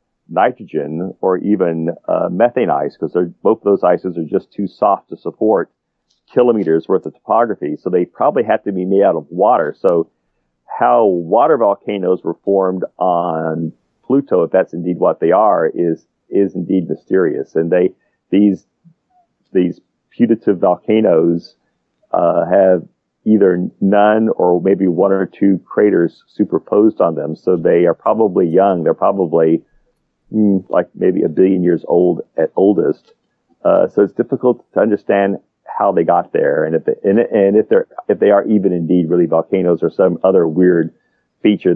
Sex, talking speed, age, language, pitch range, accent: male, 160 wpm, 40-59, English, 85-100 Hz, American